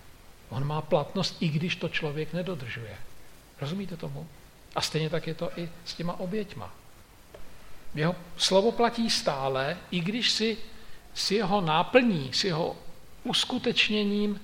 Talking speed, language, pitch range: 135 wpm, Slovak, 145-195 Hz